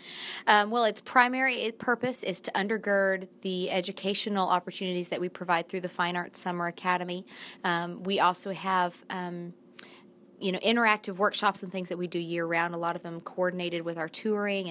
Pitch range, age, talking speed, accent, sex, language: 180-200 Hz, 20-39, 180 wpm, American, female, English